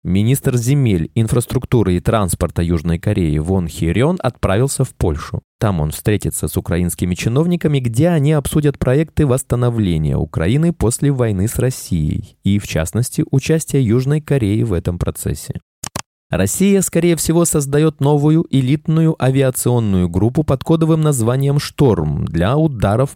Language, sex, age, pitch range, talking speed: Russian, male, 20-39, 100-145 Hz, 130 wpm